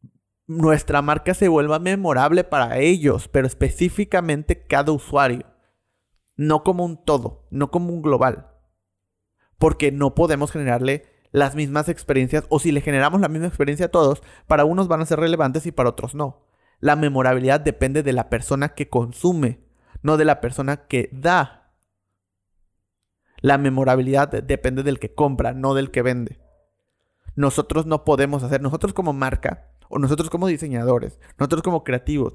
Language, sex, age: Spanish, male, 30-49